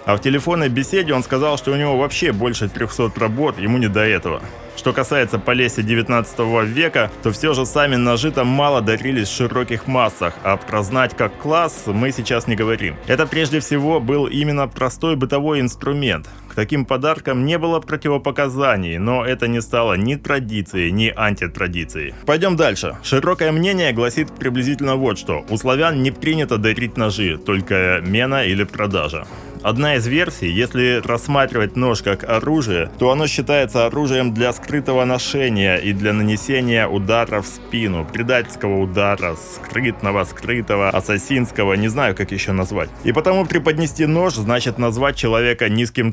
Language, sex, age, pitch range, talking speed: Russian, male, 20-39, 105-135 Hz, 155 wpm